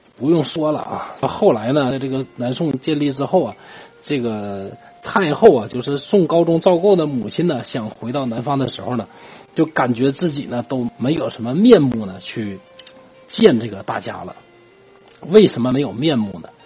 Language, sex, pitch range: Chinese, male, 115-150 Hz